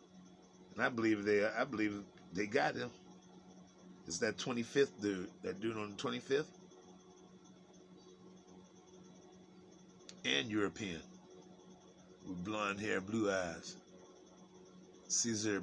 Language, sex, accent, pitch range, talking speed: English, male, American, 95-115 Hz, 95 wpm